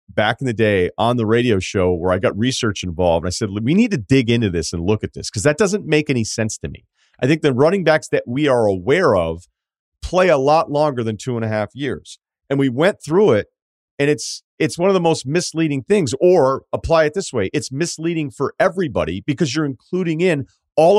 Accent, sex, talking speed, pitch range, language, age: American, male, 235 wpm, 110-155 Hz, English, 40-59